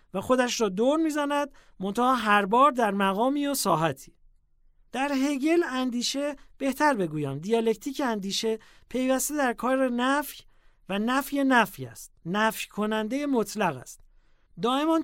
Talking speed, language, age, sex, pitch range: 130 wpm, English, 40-59, male, 160-260 Hz